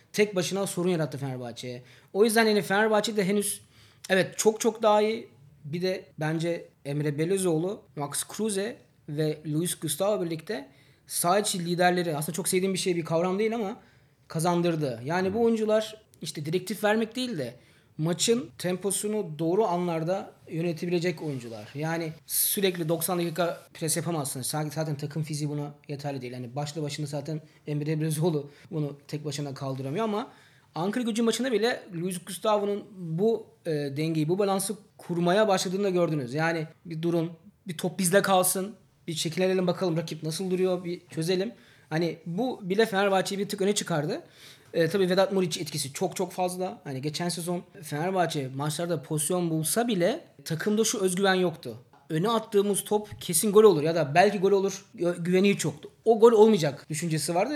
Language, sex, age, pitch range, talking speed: Turkish, male, 30-49, 155-200 Hz, 155 wpm